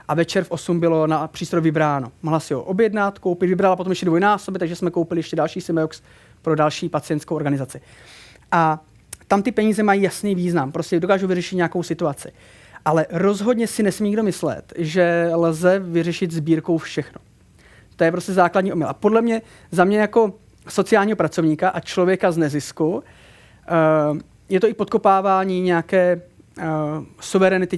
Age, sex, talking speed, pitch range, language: 30-49, male, 160 wpm, 155-185 Hz, Czech